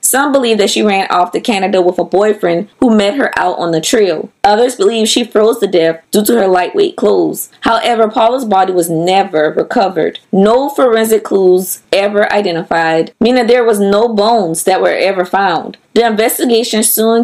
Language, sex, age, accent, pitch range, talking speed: English, female, 20-39, American, 185-235 Hz, 180 wpm